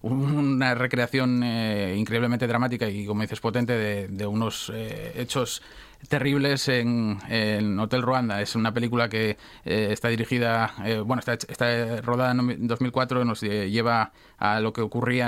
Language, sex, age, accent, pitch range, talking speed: Spanish, male, 30-49, Spanish, 110-125 Hz, 155 wpm